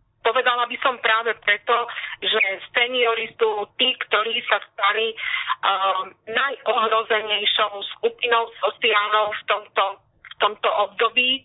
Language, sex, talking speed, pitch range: Slovak, female, 100 wpm, 205-235 Hz